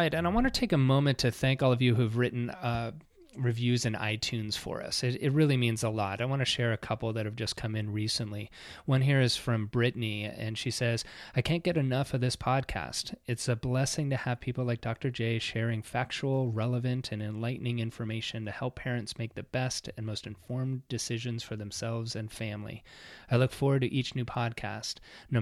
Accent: American